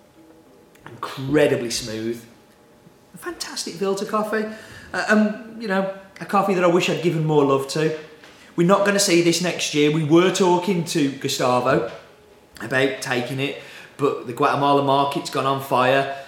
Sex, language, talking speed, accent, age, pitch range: male, English, 160 wpm, British, 30-49, 130-170 Hz